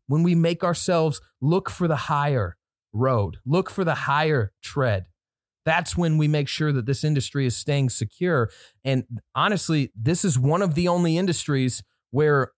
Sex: male